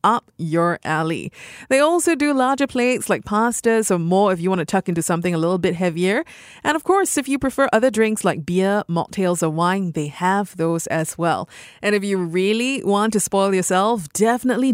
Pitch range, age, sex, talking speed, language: 175-235 Hz, 30-49, female, 205 wpm, English